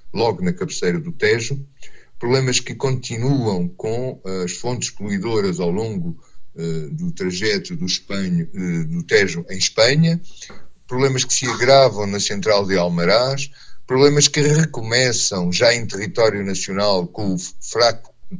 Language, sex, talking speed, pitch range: Portuguese, male, 125 wpm, 100-135 Hz